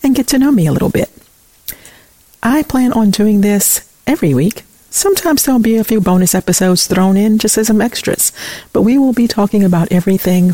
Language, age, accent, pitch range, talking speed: English, 50-69, American, 165-220 Hz, 205 wpm